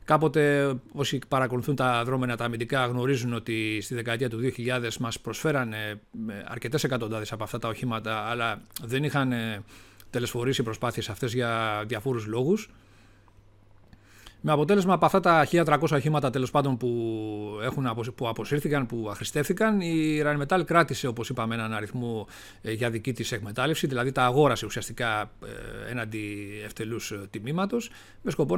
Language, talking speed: Greek, 130 wpm